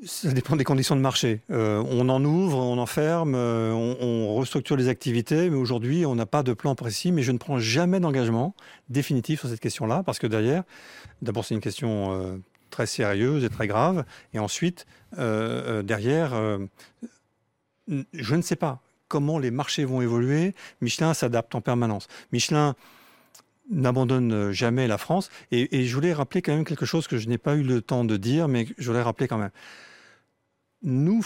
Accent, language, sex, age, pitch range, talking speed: French, French, male, 40-59, 120-160 Hz, 190 wpm